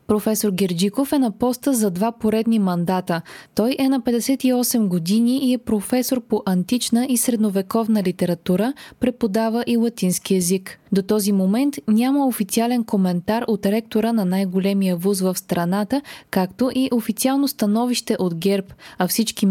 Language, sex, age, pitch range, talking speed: Bulgarian, female, 20-39, 195-250 Hz, 145 wpm